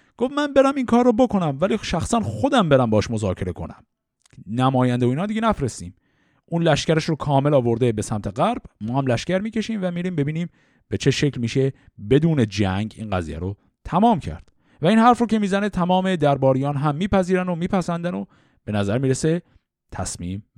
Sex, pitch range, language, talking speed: male, 110-155 Hz, Persian, 180 wpm